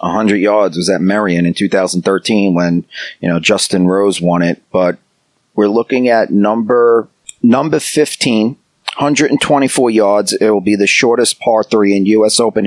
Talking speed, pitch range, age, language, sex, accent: 155 wpm, 100-120 Hz, 40-59, English, male, American